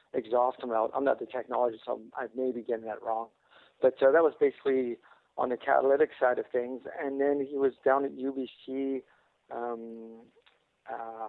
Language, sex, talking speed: English, male, 175 wpm